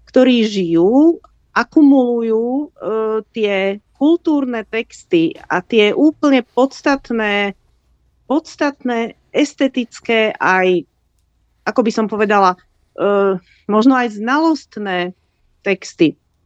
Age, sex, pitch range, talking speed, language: 40-59, female, 200-270 Hz, 85 wpm, Slovak